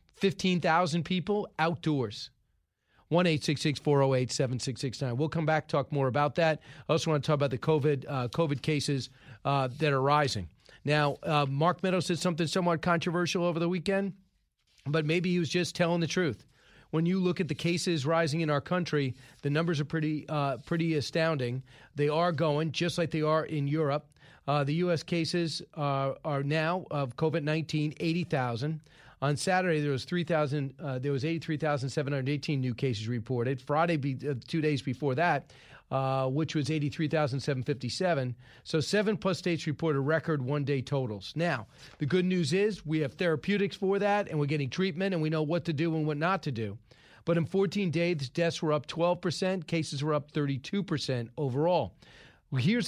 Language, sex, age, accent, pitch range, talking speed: English, male, 40-59, American, 140-175 Hz, 170 wpm